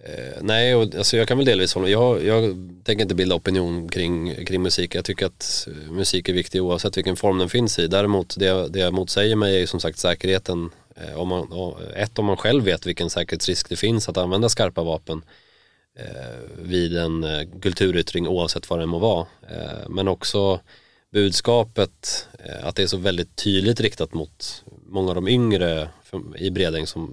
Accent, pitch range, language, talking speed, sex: native, 85-95 Hz, Swedish, 180 wpm, male